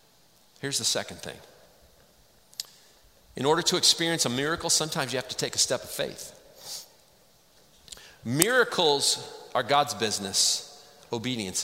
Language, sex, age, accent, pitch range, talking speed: English, male, 40-59, American, 140-220 Hz, 125 wpm